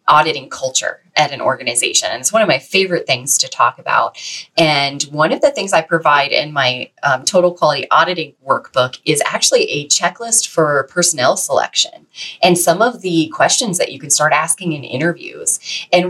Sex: female